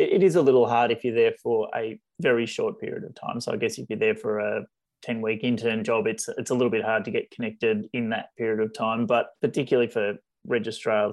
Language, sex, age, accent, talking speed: English, male, 20-39, Australian, 235 wpm